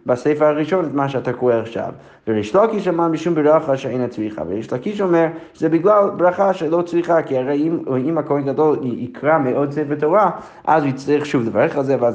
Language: Hebrew